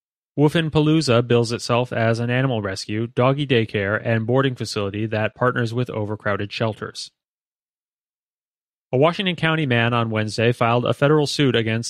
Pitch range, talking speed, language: 110-135 Hz, 145 wpm, English